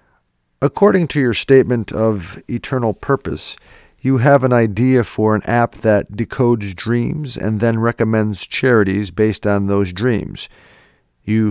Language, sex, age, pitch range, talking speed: English, male, 40-59, 100-120 Hz, 135 wpm